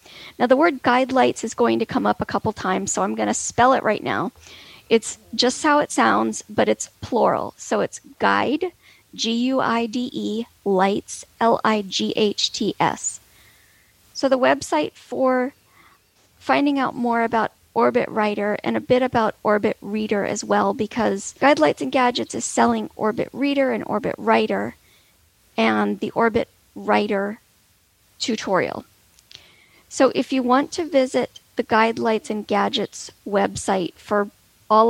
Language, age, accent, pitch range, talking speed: English, 40-59, American, 195-255 Hz, 145 wpm